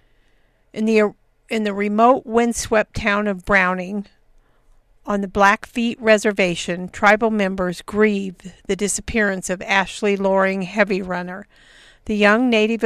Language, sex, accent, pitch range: English, female, American, 195-220 Hz